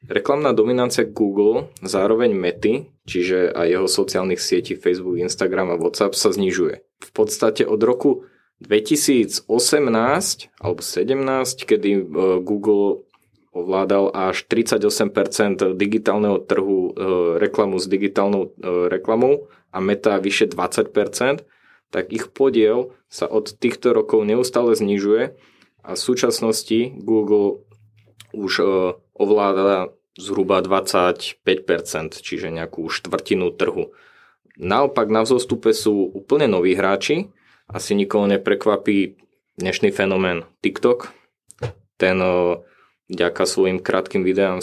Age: 20-39